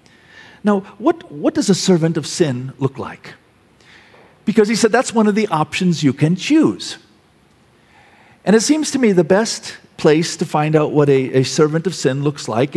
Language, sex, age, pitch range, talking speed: English, male, 50-69, 140-205 Hz, 190 wpm